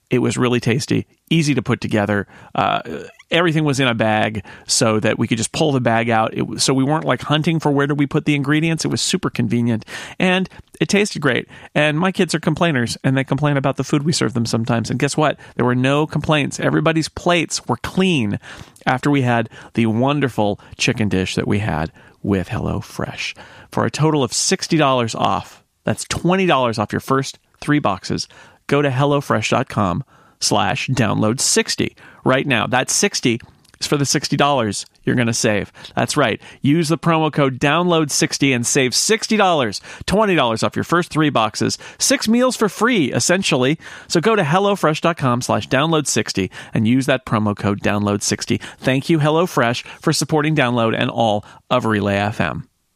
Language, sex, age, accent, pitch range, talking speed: English, male, 40-59, American, 115-155 Hz, 180 wpm